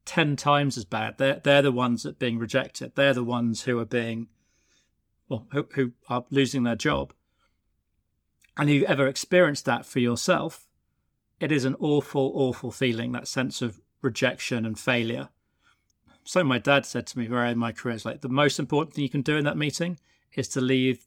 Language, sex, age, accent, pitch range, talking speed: English, male, 40-59, British, 115-140 Hz, 200 wpm